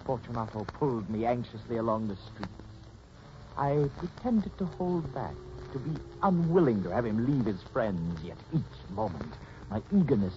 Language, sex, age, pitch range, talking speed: English, male, 60-79, 85-135 Hz, 150 wpm